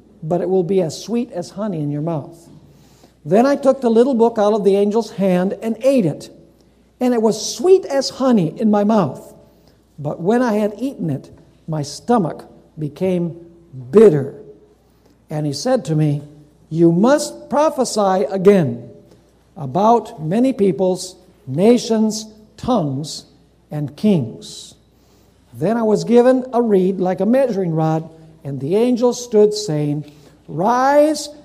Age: 60-79